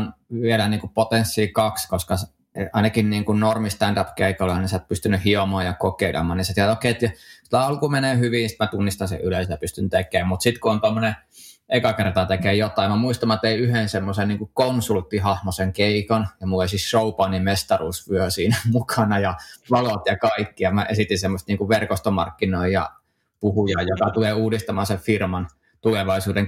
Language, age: Finnish, 20-39